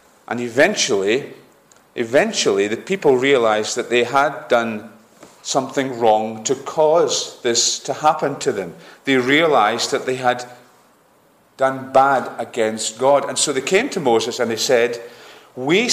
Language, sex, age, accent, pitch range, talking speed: English, male, 40-59, British, 125-185 Hz, 145 wpm